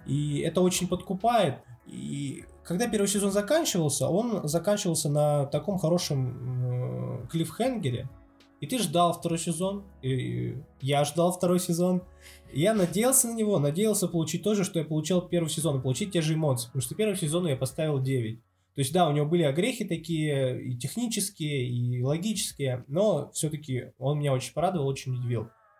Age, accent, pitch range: 20-39, native, 130-180 Hz